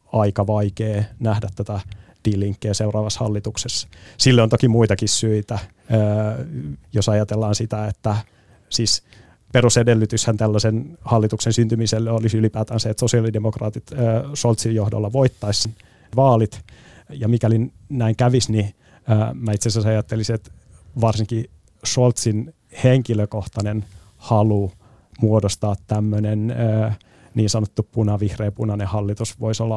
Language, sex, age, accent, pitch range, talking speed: Finnish, male, 30-49, native, 105-115 Hz, 105 wpm